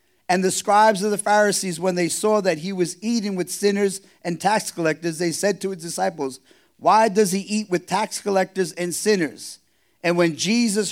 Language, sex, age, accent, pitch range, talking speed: English, male, 40-59, American, 135-190 Hz, 190 wpm